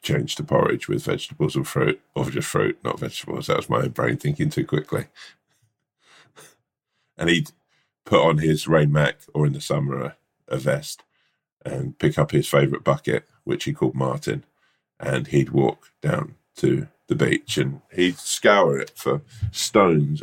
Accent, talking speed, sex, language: British, 165 wpm, male, English